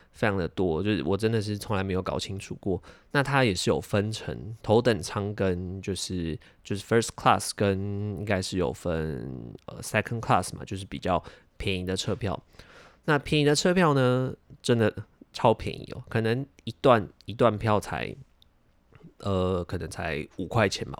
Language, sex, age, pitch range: Chinese, male, 20-39, 95-125 Hz